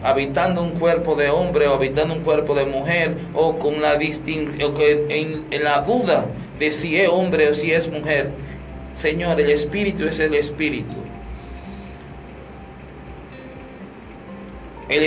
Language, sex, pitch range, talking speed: Spanish, male, 100-165 Hz, 130 wpm